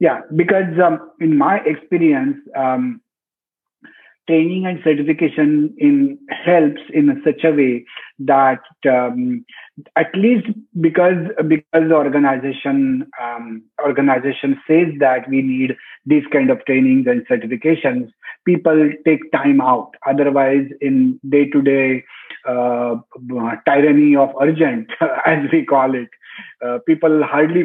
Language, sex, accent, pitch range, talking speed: English, male, Indian, 135-195 Hz, 115 wpm